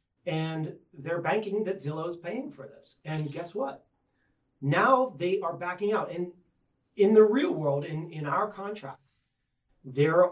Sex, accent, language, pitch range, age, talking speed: male, American, English, 135-175 Hz, 30-49, 155 wpm